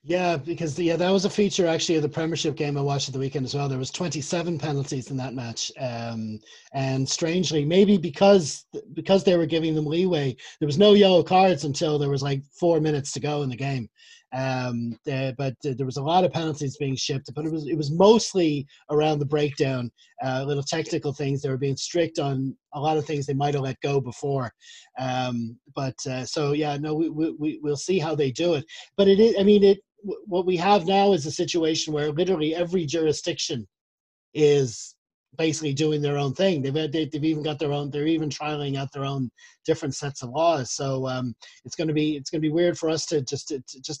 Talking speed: 225 wpm